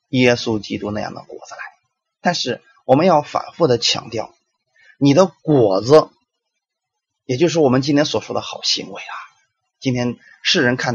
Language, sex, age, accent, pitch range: Chinese, male, 30-49, native, 125-185 Hz